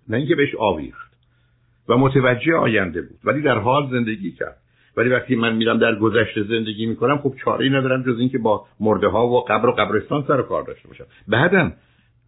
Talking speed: 200 wpm